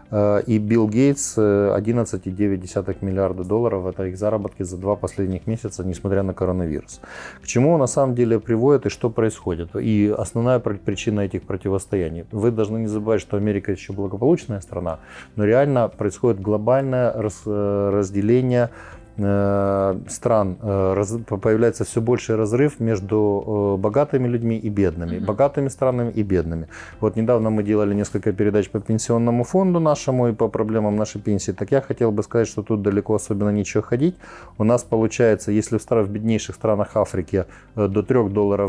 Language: Ukrainian